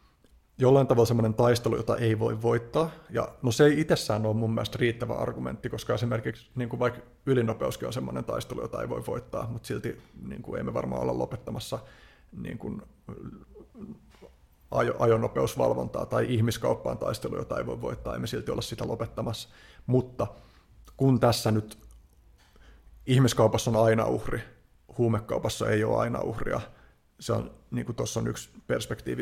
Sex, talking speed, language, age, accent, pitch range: male, 150 wpm, Finnish, 30-49, native, 110-120 Hz